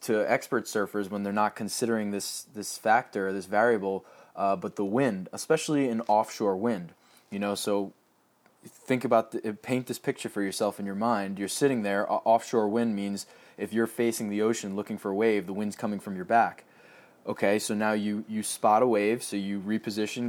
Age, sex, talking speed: 20-39, male, 200 wpm